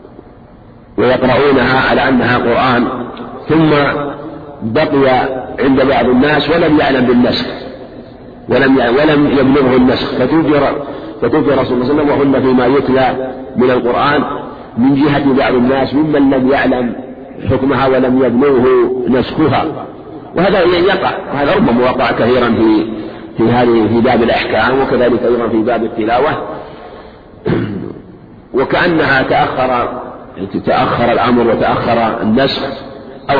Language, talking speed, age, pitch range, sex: Arabic, 115 wpm, 50-69, 125-145 Hz, male